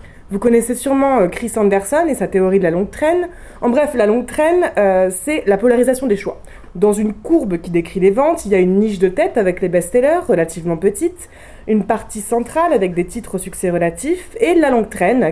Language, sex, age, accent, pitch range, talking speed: French, female, 20-39, French, 195-250 Hz, 215 wpm